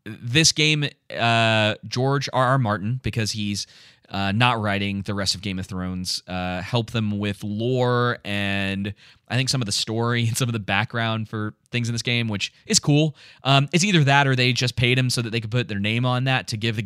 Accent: American